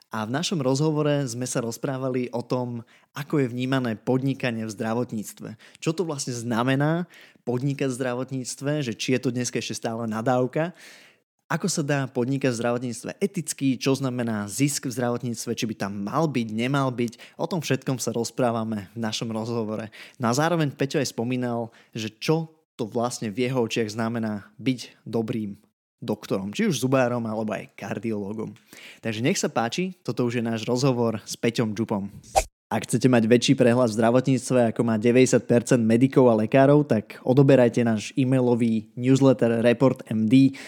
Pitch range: 115-135 Hz